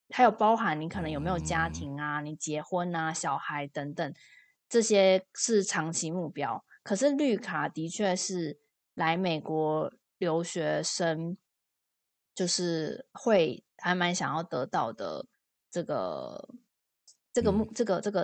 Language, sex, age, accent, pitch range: Chinese, female, 20-39, native, 160-210 Hz